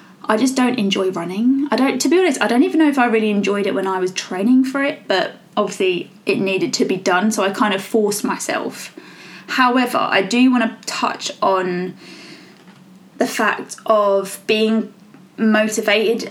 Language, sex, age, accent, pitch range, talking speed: English, female, 20-39, British, 190-230 Hz, 185 wpm